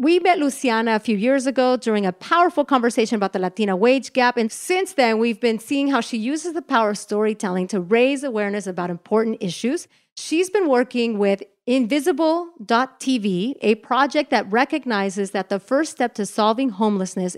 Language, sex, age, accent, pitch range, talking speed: English, female, 40-59, American, 200-255 Hz, 175 wpm